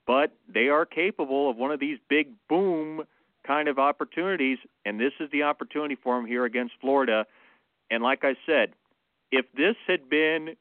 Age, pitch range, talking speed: 40-59, 120-145 Hz, 175 wpm